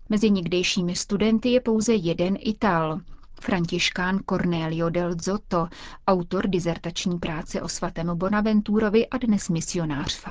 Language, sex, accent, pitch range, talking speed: Czech, female, native, 175-205 Hz, 120 wpm